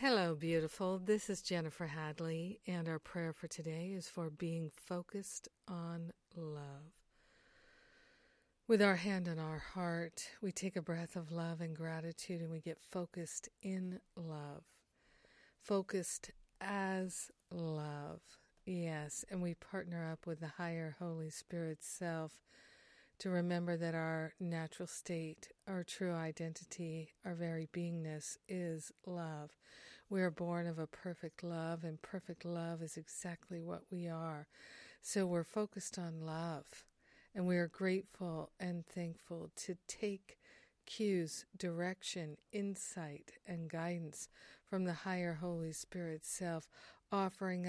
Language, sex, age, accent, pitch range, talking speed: English, female, 50-69, American, 165-185 Hz, 130 wpm